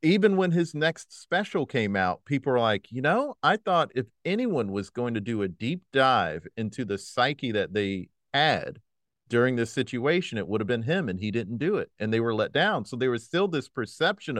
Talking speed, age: 220 wpm, 40-59